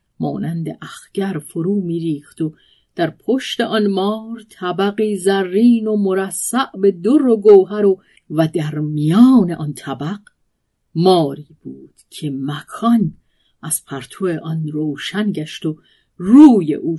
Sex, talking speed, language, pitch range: female, 125 wpm, Persian, 155-205 Hz